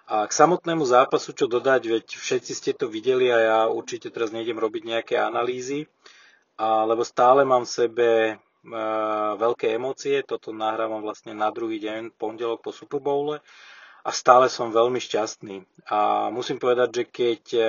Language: Slovak